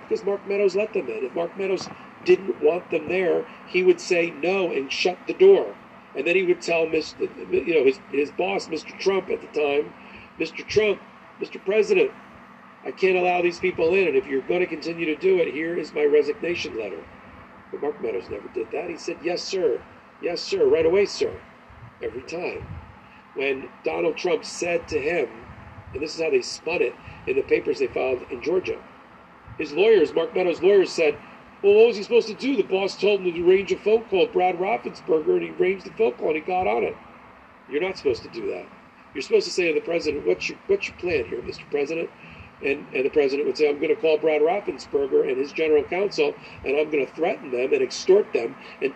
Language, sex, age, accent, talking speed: English, male, 50-69, American, 215 wpm